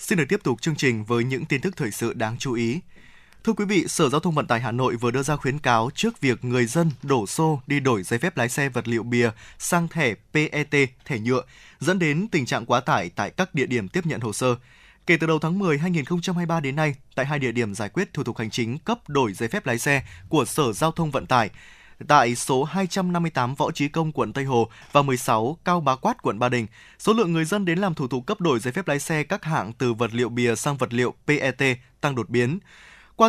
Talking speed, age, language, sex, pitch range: 250 wpm, 20-39, Vietnamese, male, 125-165 Hz